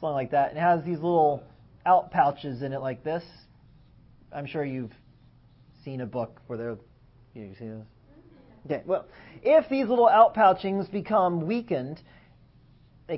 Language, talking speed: English, 160 wpm